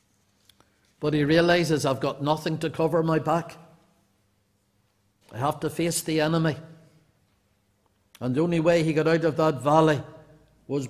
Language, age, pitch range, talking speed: English, 50-69, 100-155 Hz, 150 wpm